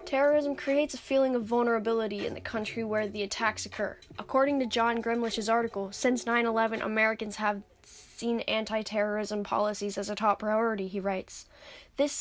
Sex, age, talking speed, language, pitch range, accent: female, 10-29, 155 wpm, English, 205-235 Hz, American